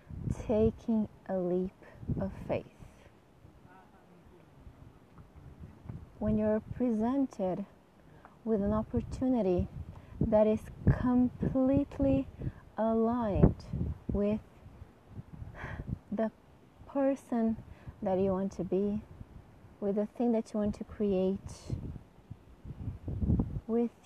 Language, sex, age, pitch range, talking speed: English, female, 30-49, 185-230 Hz, 80 wpm